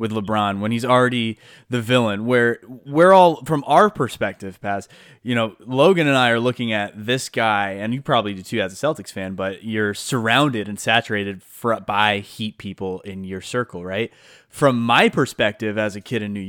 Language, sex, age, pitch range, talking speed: English, male, 20-39, 100-130 Hz, 195 wpm